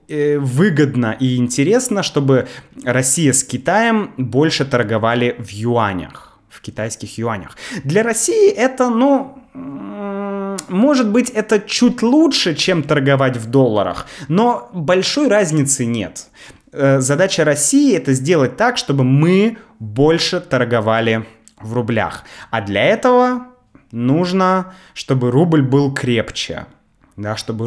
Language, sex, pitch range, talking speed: Russian, male, 110-165 Hz, 115 wpm